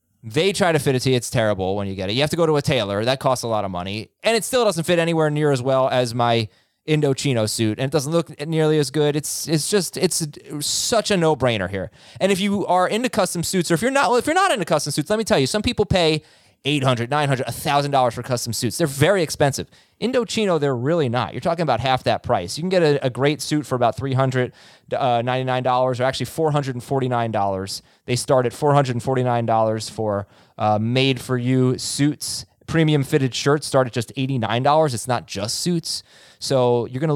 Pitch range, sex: 125-165 Hz, male